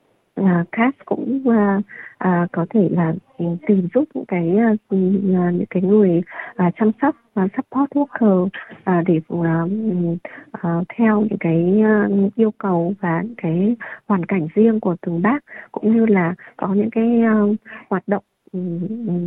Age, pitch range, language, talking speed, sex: 20-39, 180-220 Hz, Vietnamese, 160 wpm, female